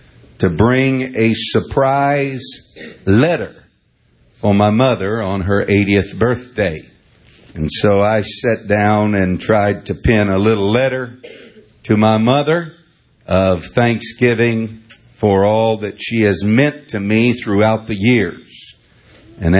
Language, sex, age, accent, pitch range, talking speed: English, male, 60-79, American, 100-125 Hz, 125 wpm